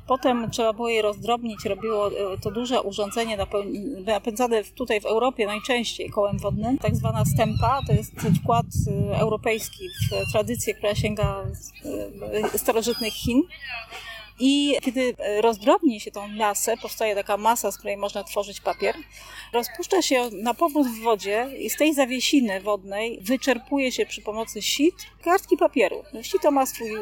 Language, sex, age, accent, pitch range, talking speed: Polish, female, 30-49, native, 210-270 Hz, 145 wpm